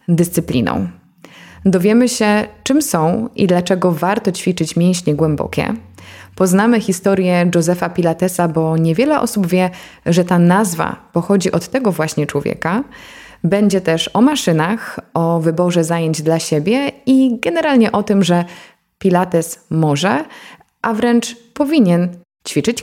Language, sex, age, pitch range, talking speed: Polish, female, 20-39, 170-210 Hz, 125 wpm